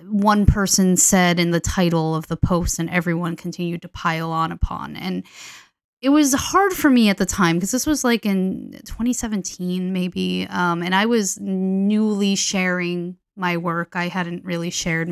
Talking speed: 175 wpm